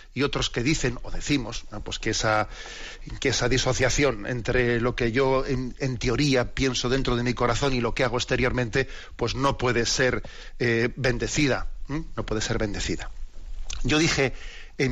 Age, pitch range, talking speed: 40-59, 115-135 Hz, 175 wpm